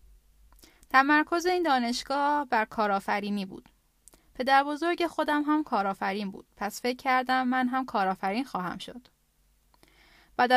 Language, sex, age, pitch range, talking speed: Persian, female, 10-29, 210-270 Hz, 120 wpm